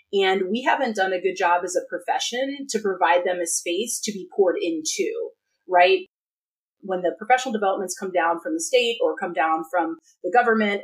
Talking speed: 195 wpm